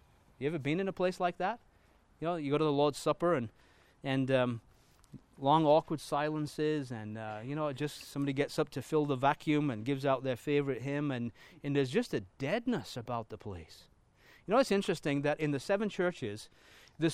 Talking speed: 205 wpm